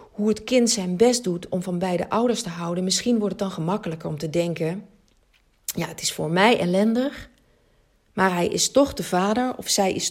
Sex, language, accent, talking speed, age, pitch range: female, Dutch, Dutch, 210 wpm, 40-59, 165-215 Hz